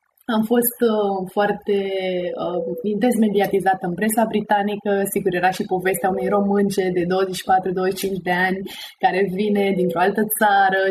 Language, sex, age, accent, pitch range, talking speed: Romanian, female, 20-39, native, 190-235 Hz, 130 wpm